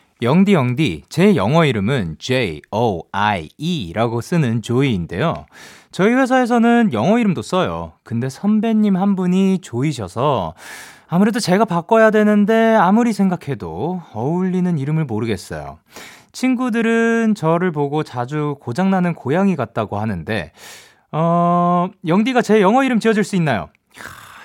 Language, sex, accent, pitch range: Korean, male, native, 140-210 Hz